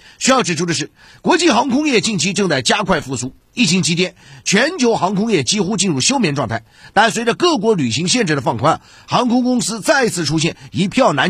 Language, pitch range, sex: Chinese, 160-235 Hz, male